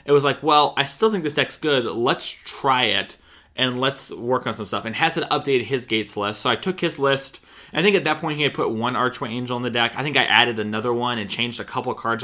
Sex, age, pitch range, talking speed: male, 20-39, 115-145 Hz, 280 wpm